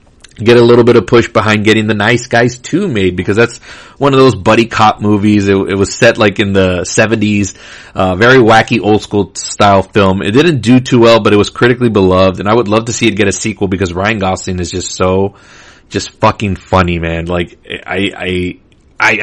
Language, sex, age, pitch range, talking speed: English, male, 30-49, 95-120 Hz, 215 wpm